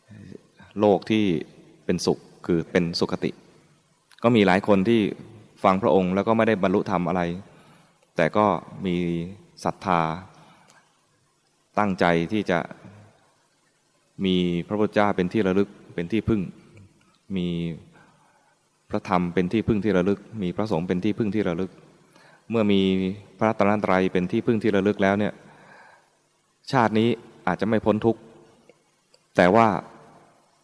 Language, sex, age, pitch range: English, male, 20-39, 90-105 Hz